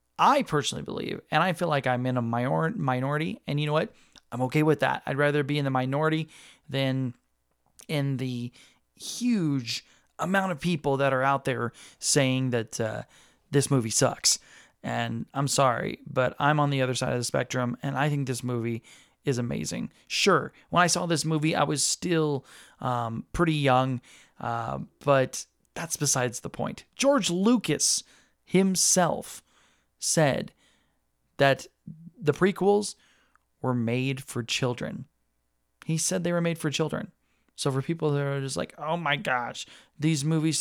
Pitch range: 125-160 Hz